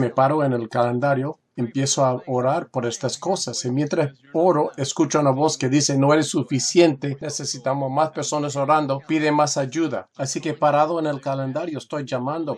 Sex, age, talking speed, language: male, 40-59, 175 wpm, Spanish